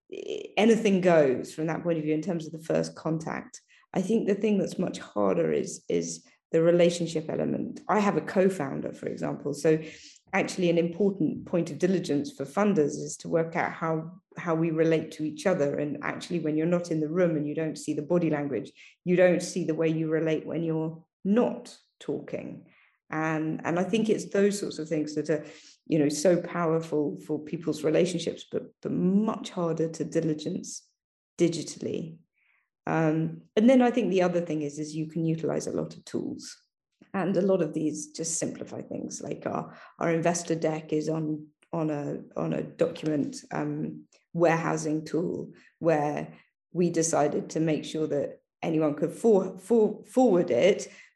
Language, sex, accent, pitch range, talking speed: English, female, British, 155-180 Hz, 180 wpm